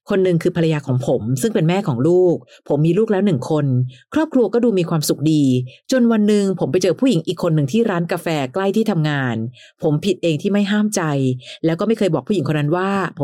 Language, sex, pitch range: Thai, female, 145-200 Hz